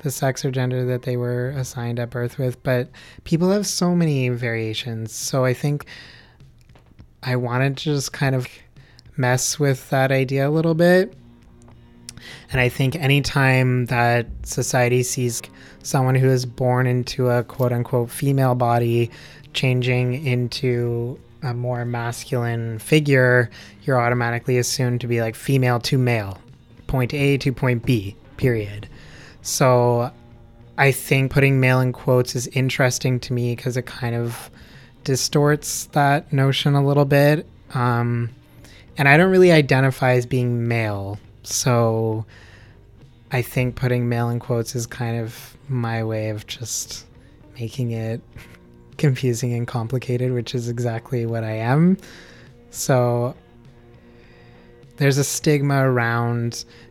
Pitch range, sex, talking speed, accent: 120-135 Hz, male, 140 wpm, American